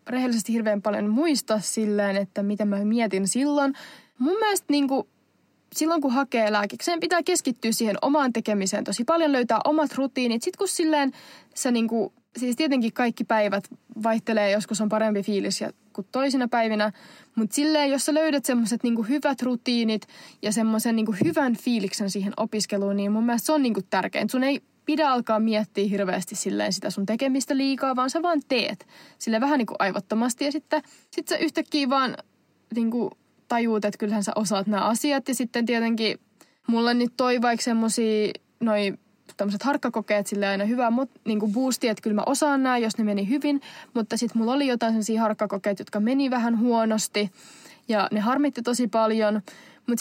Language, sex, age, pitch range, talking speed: Finnish, female, 20-39, 215-270 Hz, 170 wpm